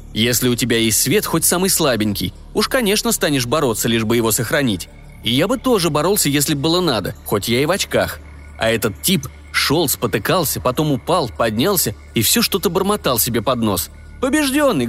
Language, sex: Russian, male